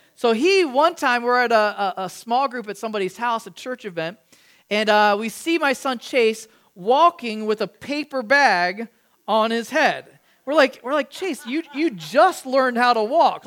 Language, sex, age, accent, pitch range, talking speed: English, male, 40-59, American, 205-265 Hz, 195 wpm